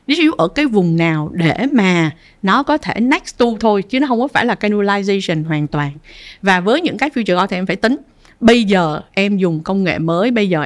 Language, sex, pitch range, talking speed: Vietnamese, female, 180-245 Hz, 230 wpm